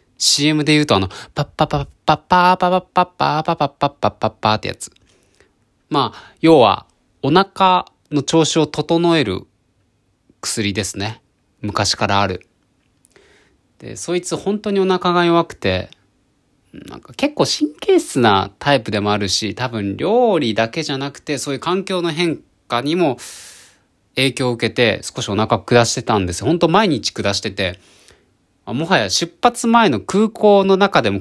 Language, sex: Japanese, male